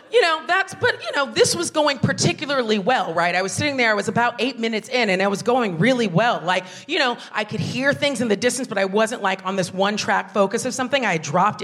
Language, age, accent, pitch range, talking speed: English, 40-59, American, 180-245 Hz, 260 wpm